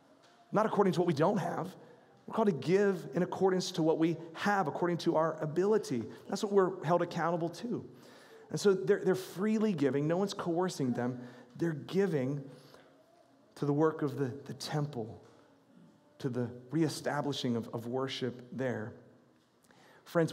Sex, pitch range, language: male, 125-170 Hz, English